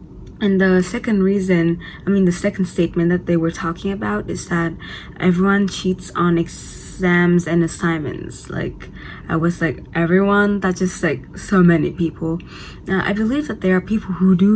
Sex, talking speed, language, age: female, 175 wpm, English, 20-39